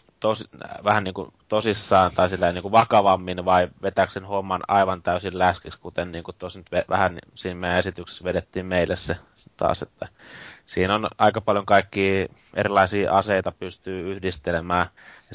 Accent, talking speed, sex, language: native, 135 wpm, male, Finnish